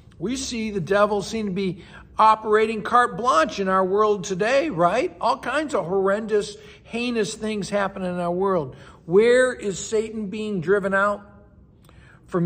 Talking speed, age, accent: 155 wpm, 60-79, American